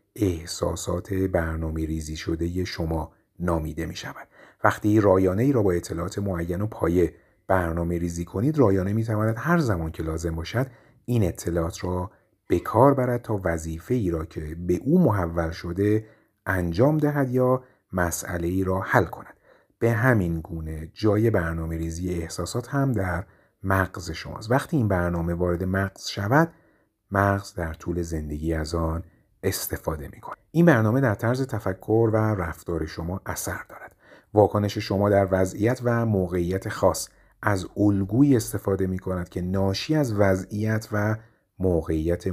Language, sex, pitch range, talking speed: Persian, male, 85-110 Hz, 140 wpm